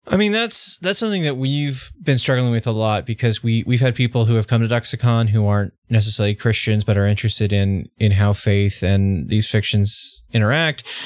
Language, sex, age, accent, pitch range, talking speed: English, male, 30-49, American, 95-115 Hz, 205 wpm